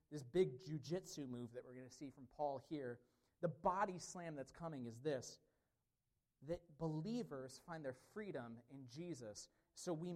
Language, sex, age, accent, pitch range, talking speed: English, male, 30-49, American, 130-190 Hz, 165 wpm